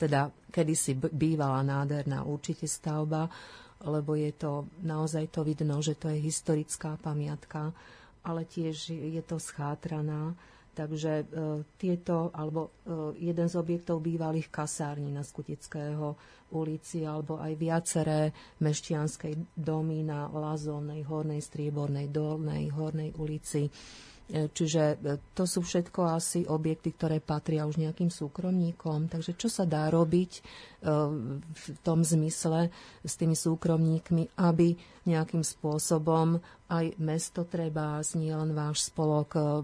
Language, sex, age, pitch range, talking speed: Slovak, female, 40-59, 150-165 Hz, 120 wpm